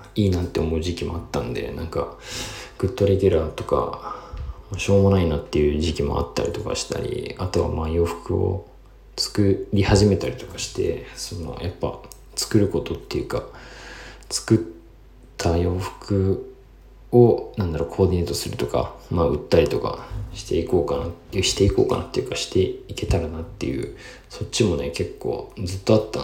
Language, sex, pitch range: Japanese, male, 85-100 Hz